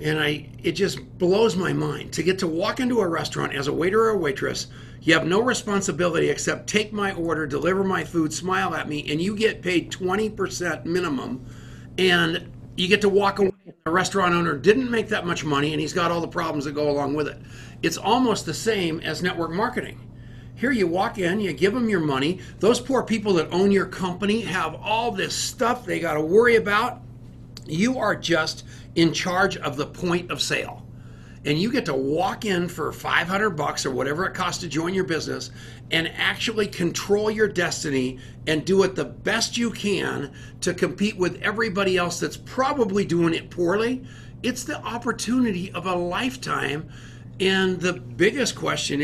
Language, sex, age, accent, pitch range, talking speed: English, male, 50-69, American, 155-205 Hz, 190 wpm